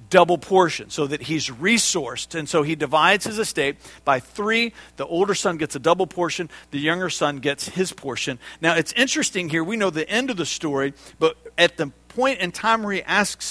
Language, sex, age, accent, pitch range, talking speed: English, male, 50-69, American, 110-170 Hz, 210 wpm